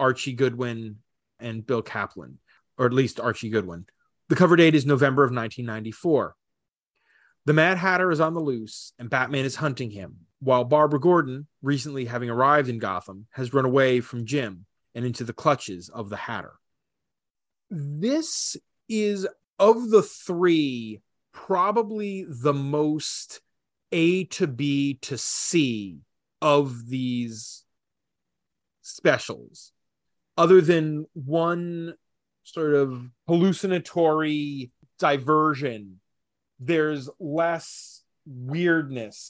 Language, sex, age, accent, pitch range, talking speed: English, male, 30-49, American, 125-165 Hz, 115 wpm